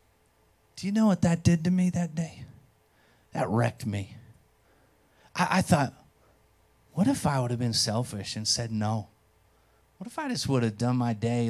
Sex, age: male, 30-49